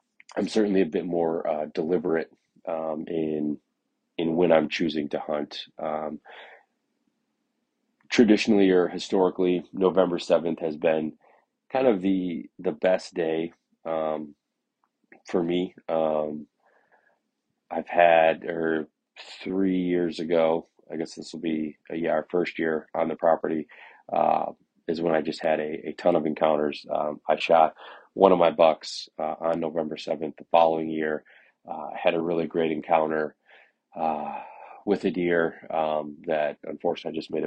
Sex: male